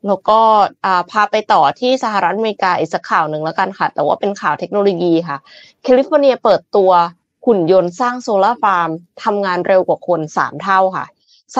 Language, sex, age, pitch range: Thai, female, 20-39, 180-245 Hz